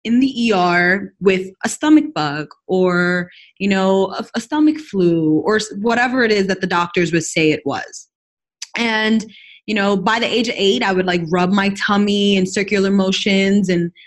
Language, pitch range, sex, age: English, 195-270 Hz, female, 20-39